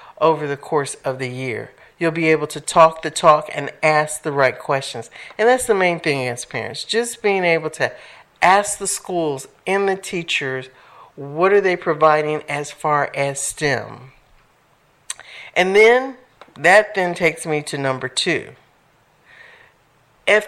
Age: 50-69